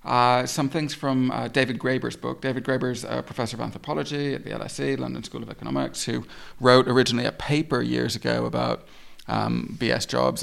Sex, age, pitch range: male, 30-49, 110-145 Hz